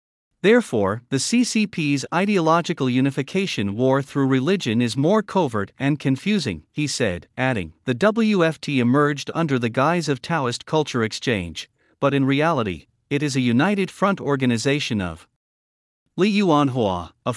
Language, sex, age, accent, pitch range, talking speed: English, male, 50-69, American, 115-165 Hz, 135 wpm